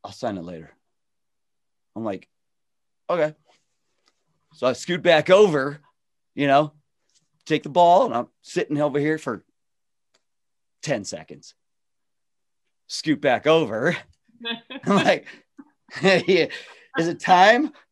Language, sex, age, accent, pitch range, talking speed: English, male, 40-59, American, 140-235 Hz, 115 wpm